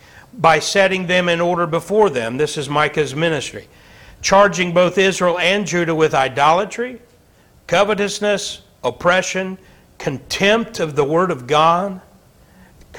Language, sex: English, male